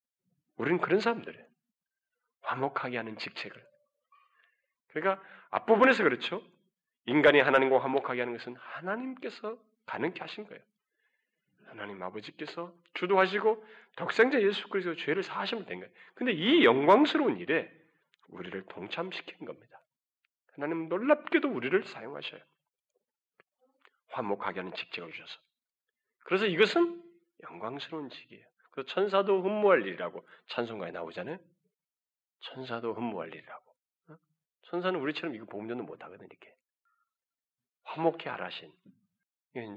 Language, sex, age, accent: Korean, male, 40-59, native